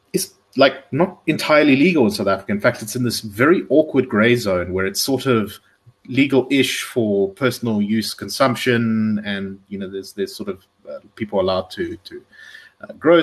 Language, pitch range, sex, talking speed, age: English, 100-125 Hz, male, 175 wpm, 30-49